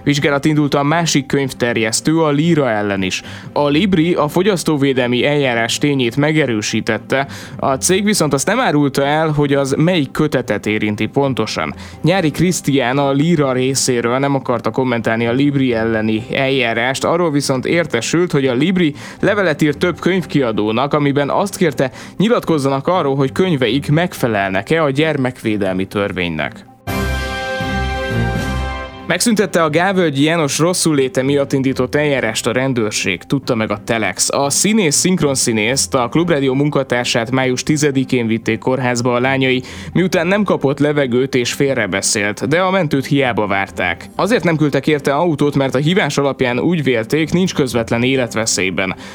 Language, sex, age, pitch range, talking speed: Hungarian, male, 20-39, 120-155 Hz, 140 wpm